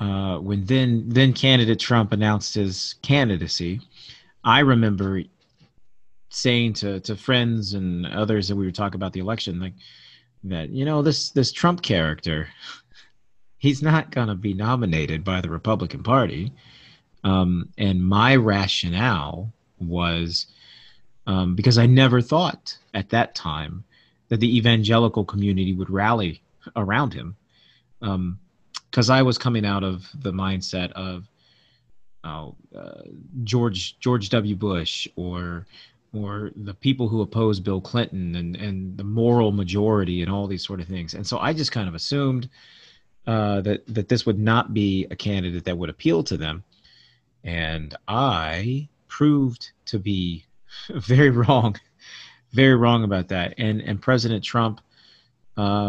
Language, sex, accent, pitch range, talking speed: English, male, American, 95-120 Hz, 145 wpm